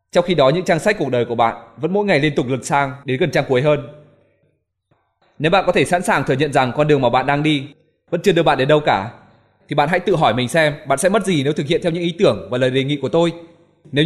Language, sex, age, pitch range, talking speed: Vietnamese, male, 20-39, 130-170 Hz, 295 wpm